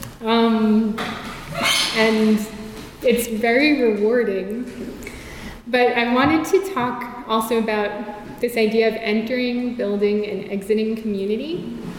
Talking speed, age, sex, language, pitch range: 100 wpm, 20-39, female, English, 205-235 Hz